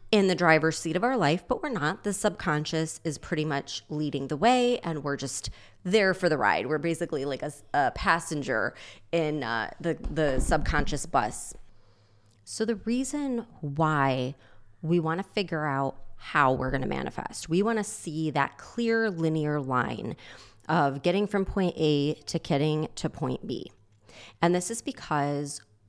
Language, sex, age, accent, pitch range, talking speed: English, female, 30-49, American, 140-180 Hz, 170 wpm